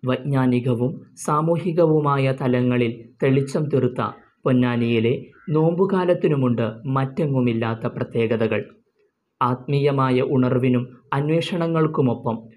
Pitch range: 125-150 Hz